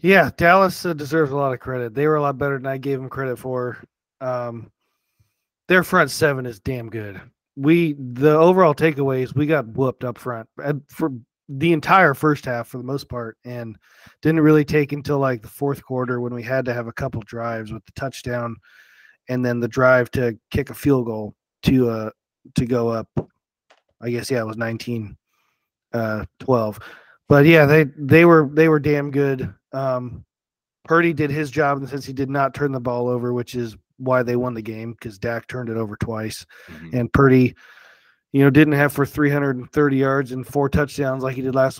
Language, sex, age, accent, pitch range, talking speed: English, male, 30-49, American, 120-145 Hz, 195 wpm